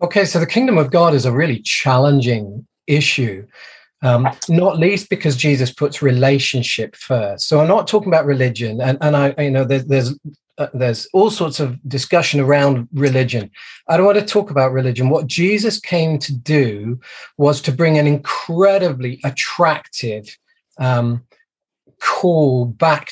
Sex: male